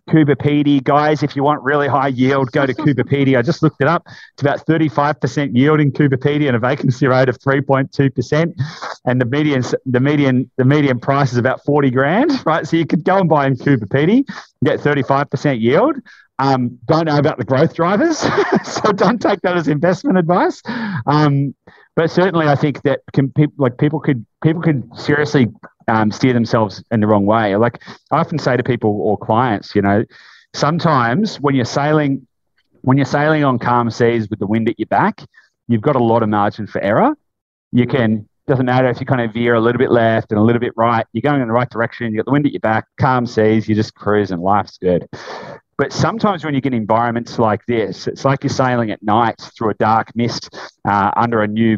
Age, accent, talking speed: 30-49, Australian, 215 wpm